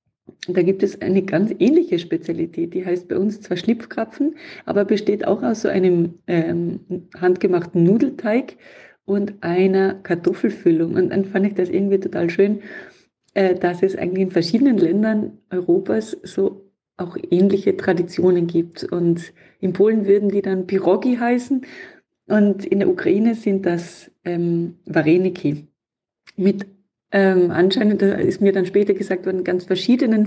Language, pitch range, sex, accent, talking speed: German, 180-210 Hz, female, German, 145 wpm